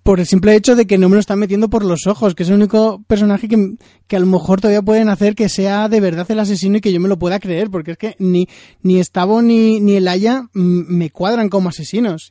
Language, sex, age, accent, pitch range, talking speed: Spanish, male, 20-39, Spanish, 175-205 Hz, 265 wpm